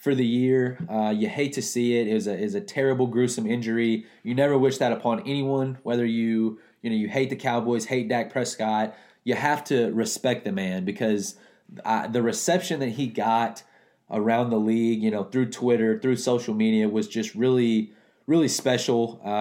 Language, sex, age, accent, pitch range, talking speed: English, male, 20-39, American, 110-130 Hz, 195 wpm